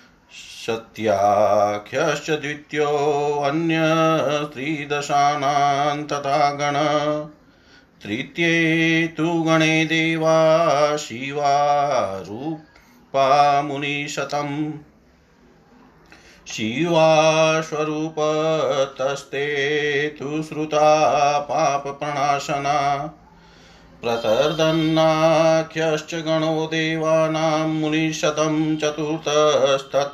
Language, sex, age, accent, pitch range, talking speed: Hindi, male, 40-59, native, 140-155 Hz, 35 wpm